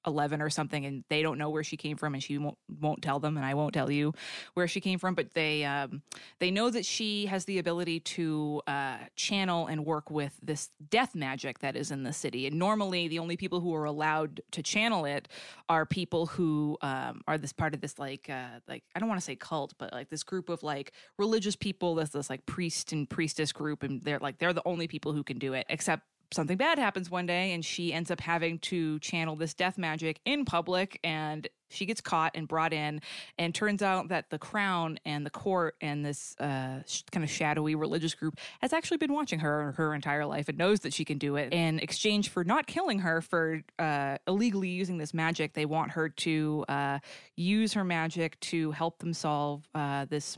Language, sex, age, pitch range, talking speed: English, female, 20-39, 150-180 Hz, 225 wpm